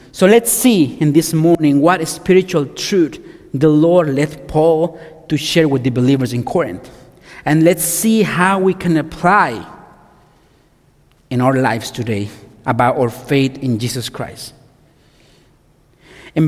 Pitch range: 140-180 Hz